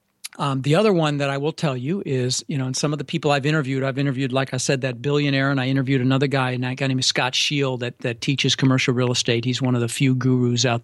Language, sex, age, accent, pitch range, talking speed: English, male, 50-69, American, 130-155 Hz, 275 wpm